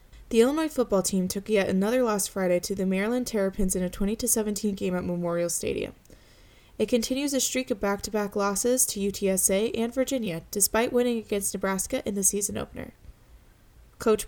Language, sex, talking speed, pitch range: English, female, 170 wpm, 190-225 Hz